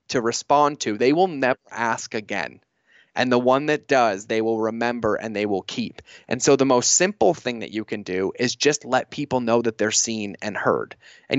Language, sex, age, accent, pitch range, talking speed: English, male, 20-39, American, 105-130 Hz, 215 wpm